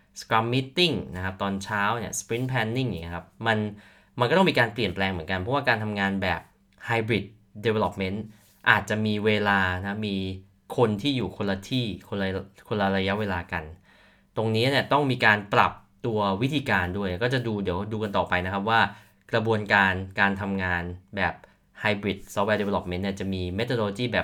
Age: 20-39